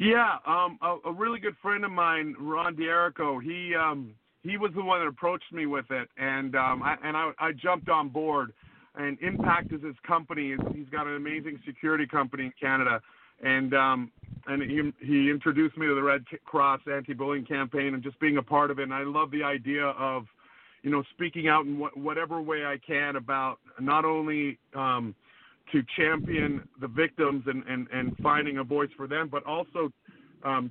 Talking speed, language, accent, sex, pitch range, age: 195 wpm, English, American, male, 135-160 Hz, 50-69